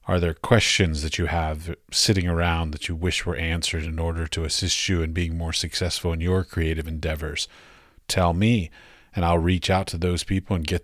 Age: 40-59